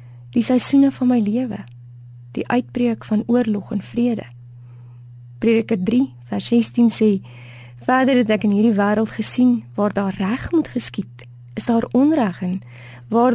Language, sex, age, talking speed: Dutch, female, 20-39, 145 wpm